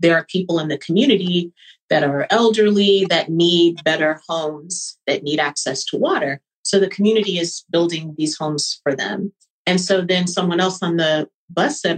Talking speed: 180 wpm